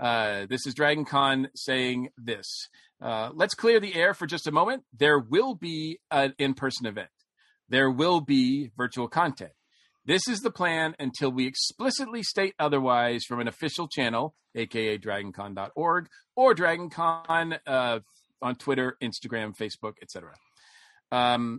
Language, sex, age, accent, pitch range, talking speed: English, male, 40-59, American, 125-180 Hz, 140 wpm